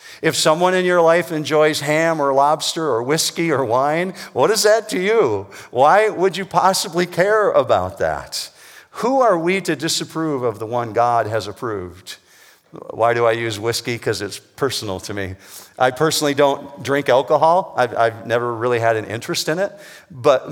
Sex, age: male, 50-69